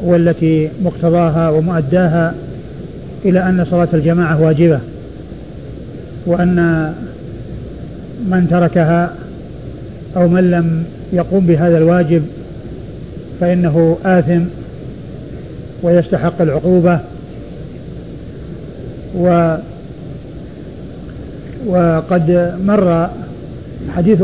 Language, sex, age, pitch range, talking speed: Arabic, male, 50-69, 165-180 Hz, 60 wpm